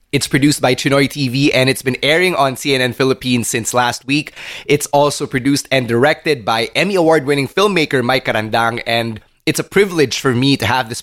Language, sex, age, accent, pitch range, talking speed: English, male, 20-39, Filipino, 120-155 Hz, 195 wpm